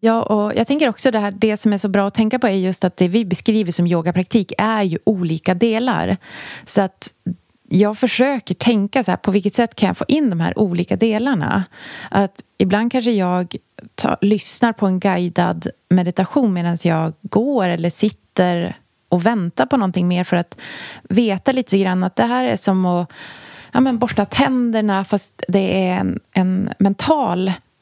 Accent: Swedish